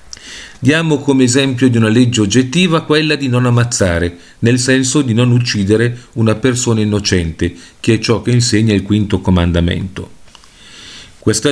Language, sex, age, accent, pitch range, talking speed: Italian, male, 40-59, native, 100-130 Hz, 145 wpm